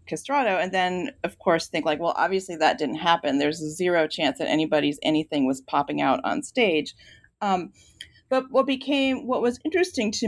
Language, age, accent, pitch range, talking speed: English, 40-59, American, 165-225 Hz, 180 wpm